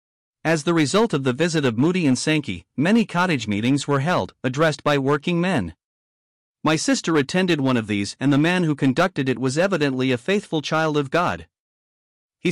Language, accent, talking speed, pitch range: English, American, 185 wpm, 125-165 Hz